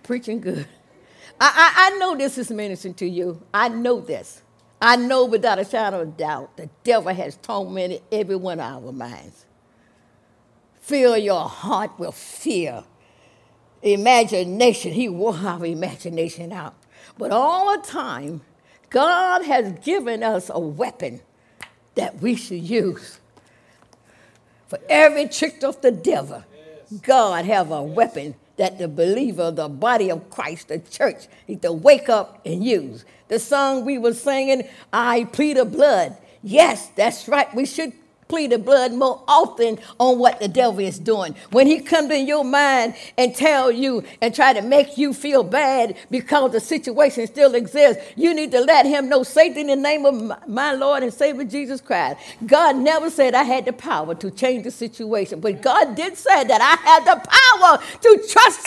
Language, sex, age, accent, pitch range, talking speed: English, female, 60-79, American, 205-295 Hz, 170 wpm